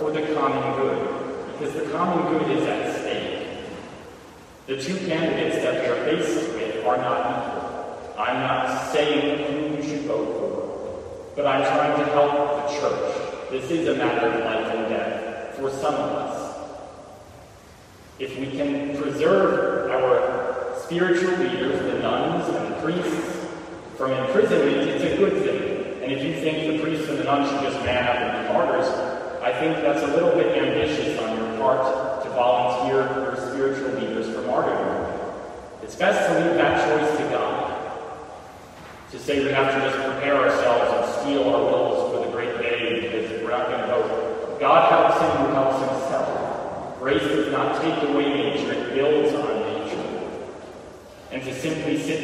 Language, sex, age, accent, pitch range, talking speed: English, male, 30-49, American, 135-165 Hz, 170 wpm